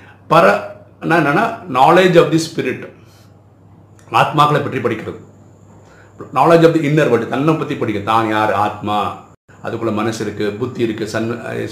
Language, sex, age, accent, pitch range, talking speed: Tamil, male, 60-79, native, 105-145 Hz, 140 wpm